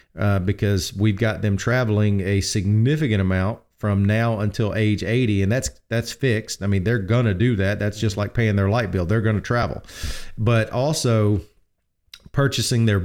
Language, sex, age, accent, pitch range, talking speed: English, male, 40-59, American, 100-125 Hz, 185 wpm